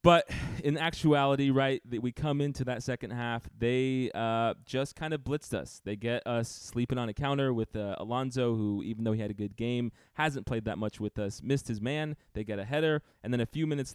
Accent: American